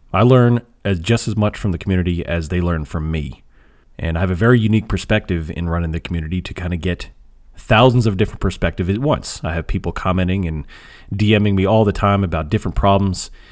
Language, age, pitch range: English, 30-49, 85-110 Hz